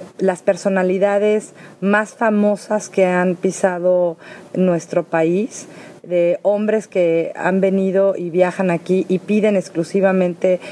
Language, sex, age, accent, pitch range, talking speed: Spanish, female, 40-59, Mexican, 175-195 Hz, 110 wpm